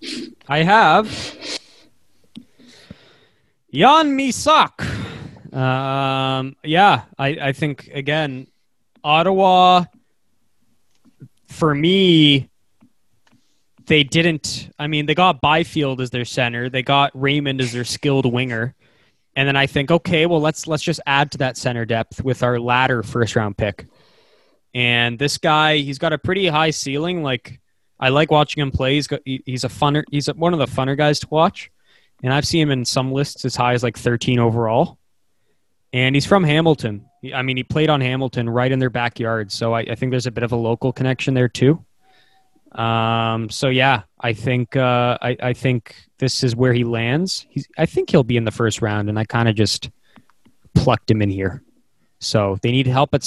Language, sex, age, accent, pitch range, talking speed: English, male, 20-39, American, 120-150 Hz, 170 wpm